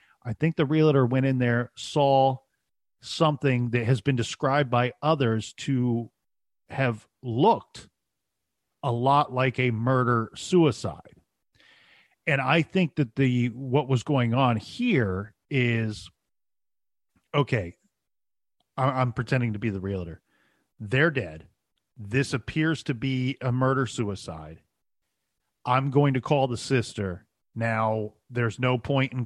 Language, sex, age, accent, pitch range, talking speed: English, male, 40-59, American, 115-135 Hz, 125 wpm